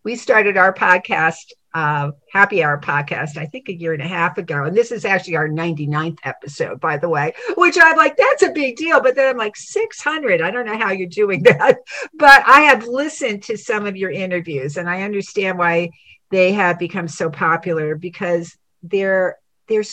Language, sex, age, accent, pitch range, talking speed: English, female, 50-69, American, 160-230 Hz, 200 wpm